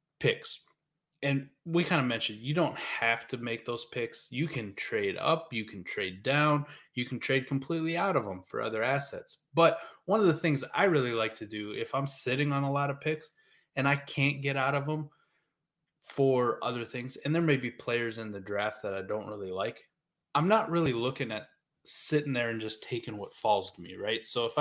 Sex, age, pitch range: male, 20-39, 110-150 Hz